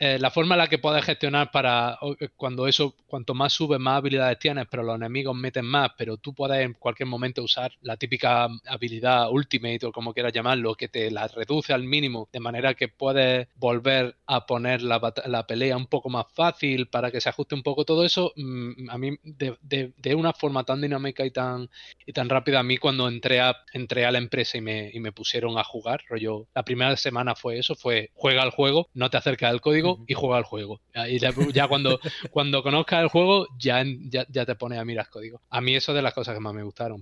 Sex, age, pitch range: male, 20-39, 120-145 Hz